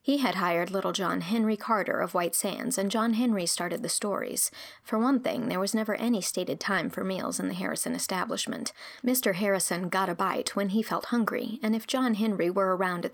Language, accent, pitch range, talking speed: English, American, 185-235 Hz, 215 wpm